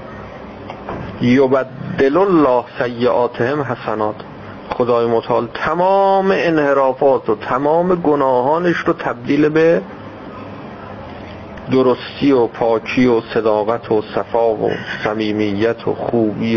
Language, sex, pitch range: Persian, male, 105-155 Hz